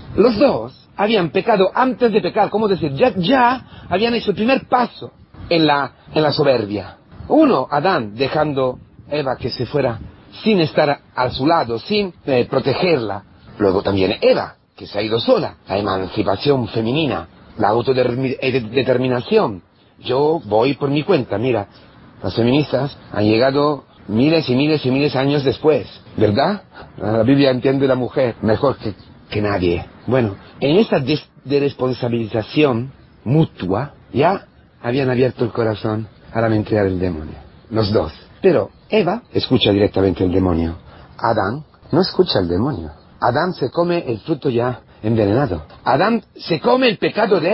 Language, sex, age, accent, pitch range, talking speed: Spanish, male, 40-59, Mexican, 105-160 Hz, 150 wpm